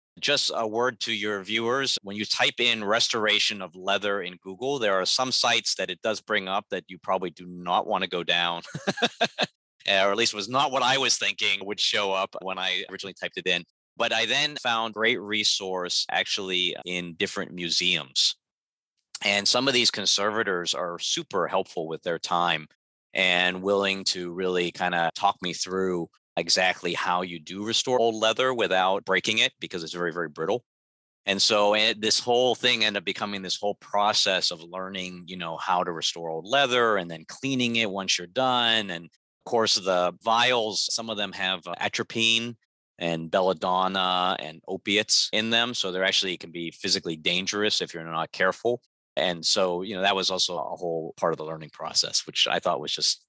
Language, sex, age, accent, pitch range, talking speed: English, male, 30-49, American, 90-110 Hz, 190 wpm